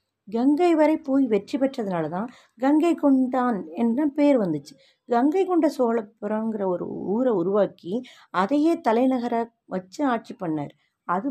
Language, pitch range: Tamil, 210-290 Hz